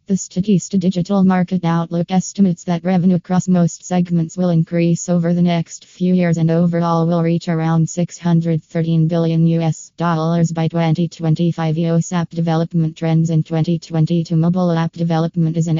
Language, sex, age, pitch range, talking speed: English, female, 20-39, 165-180 Hz, 145 wpm